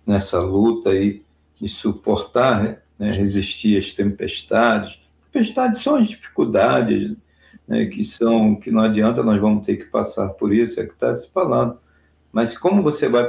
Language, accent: Portuguese, Brazilian